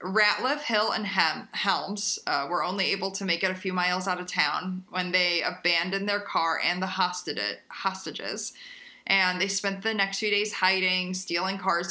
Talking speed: 175 wpm